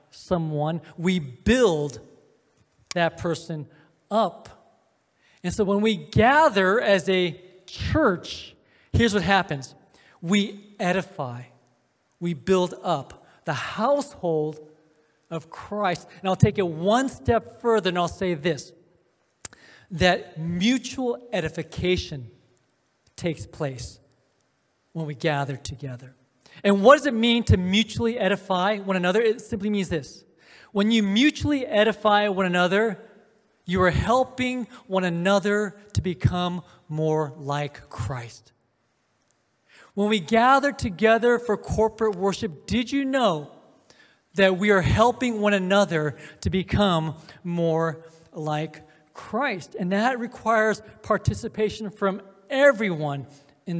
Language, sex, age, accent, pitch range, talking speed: English, male, 40-59, American, 155-210 Hz, 115 wpm